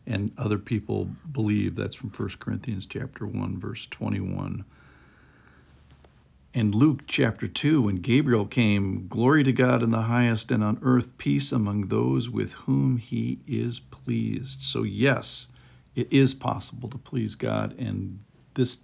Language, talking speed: English, 145 wpm